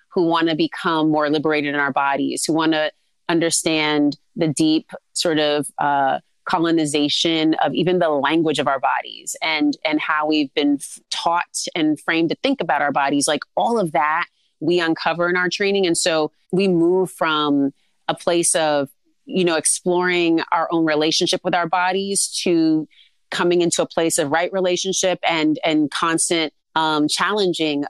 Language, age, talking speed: English, 30-49, 170 wpm